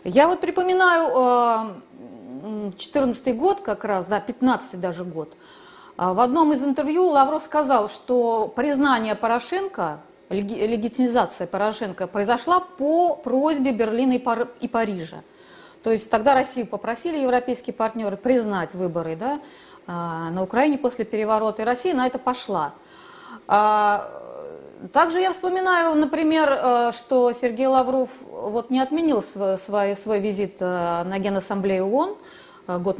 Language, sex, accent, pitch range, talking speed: Russian, female, native, 200-280 Hz, 120 wpm